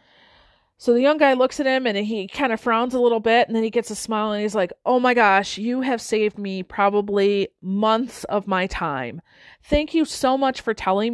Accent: American